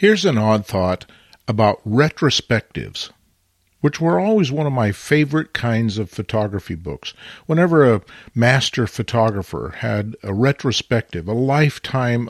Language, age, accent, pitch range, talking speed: English, 50-69, American, 105-135 Hz, 125 wpm